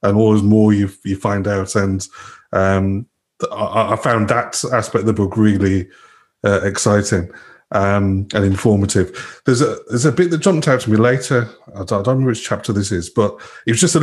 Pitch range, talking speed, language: 105-130 Hz, 200 wpm, English